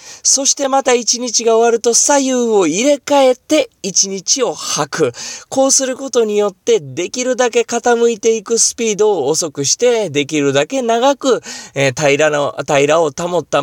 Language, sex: Japanese, male